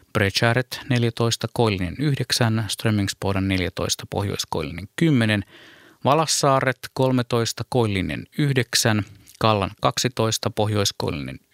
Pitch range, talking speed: 100-125 Hz, 80 wpm